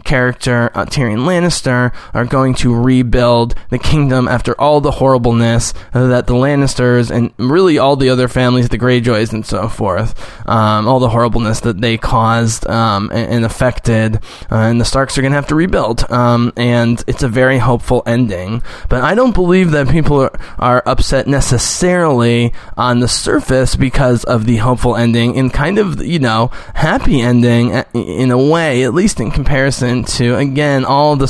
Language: English